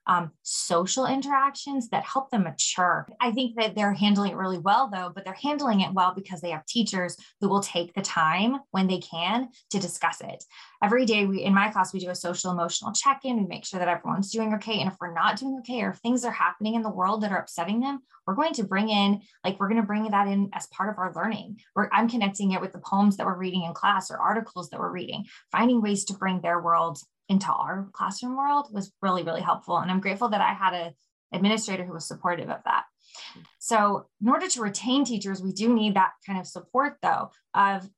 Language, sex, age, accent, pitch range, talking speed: English, female, 20-39, American, 180-215 Hz, 230 wpm